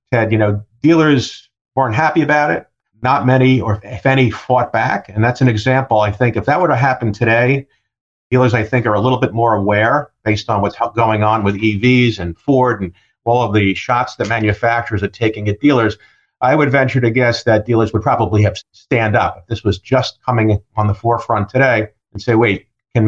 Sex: male